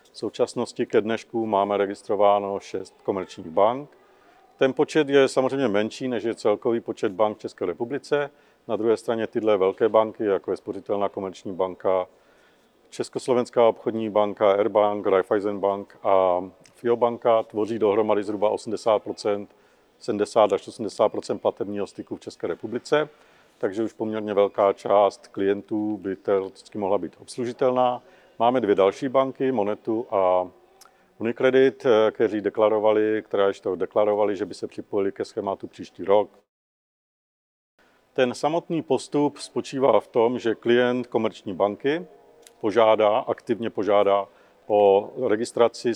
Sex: male